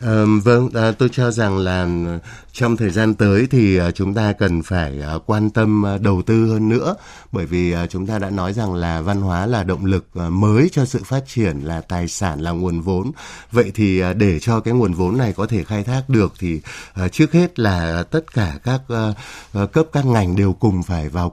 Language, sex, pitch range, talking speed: Vietnamese, male, 90-120 Hz, 200 wpm